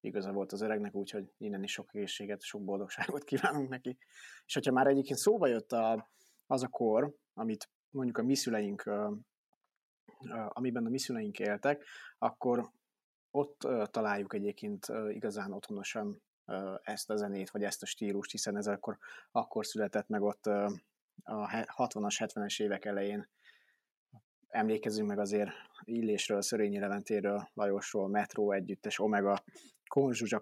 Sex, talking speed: male, 135 wpm